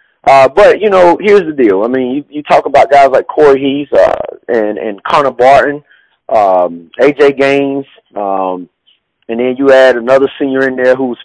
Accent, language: American, English